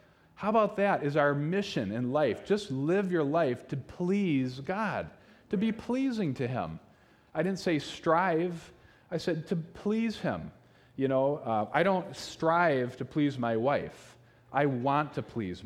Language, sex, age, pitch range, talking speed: English, male, 30-49, 115-165 Hz, 165 wpm